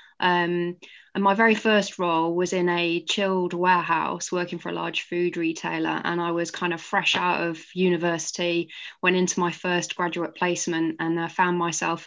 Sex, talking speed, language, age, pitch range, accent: female, 180 wpm, English, 20-39, 170-190 Hz, British